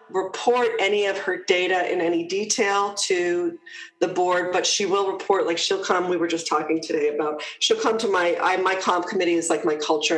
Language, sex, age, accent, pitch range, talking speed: English, female, 40-59, American, 170-245 Hz, 210 wpm